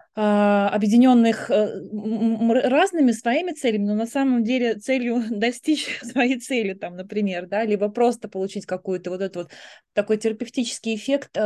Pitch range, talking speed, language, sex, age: 200-230 Hz, 120 wpm, Russian, female, 20-39